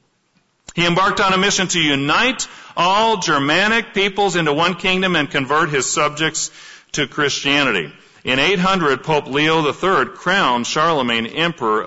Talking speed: 135 wpm